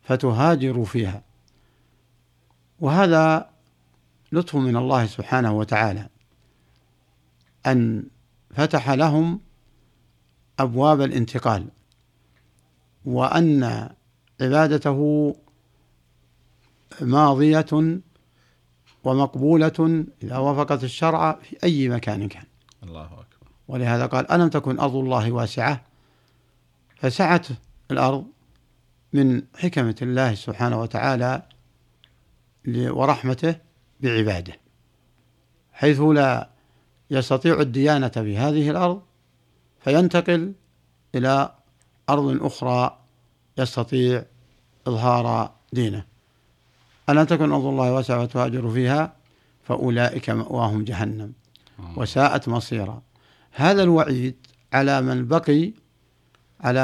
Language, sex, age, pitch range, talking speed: Arabic, male, 60-79, 110-145 Hz, 75 wpm